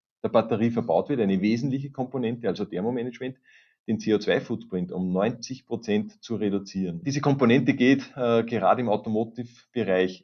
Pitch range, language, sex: 110-135 Hz, German, male